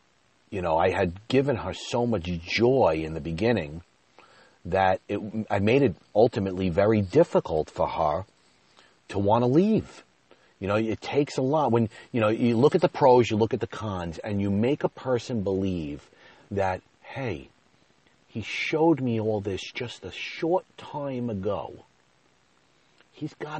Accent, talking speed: American, 165 wpm